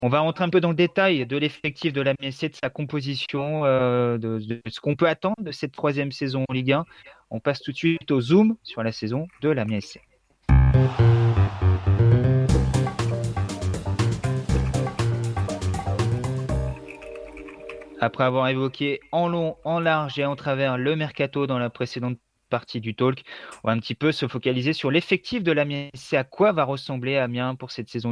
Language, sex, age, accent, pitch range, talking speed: French, male, 30-49, French, 120-150 Hz, 165 wpm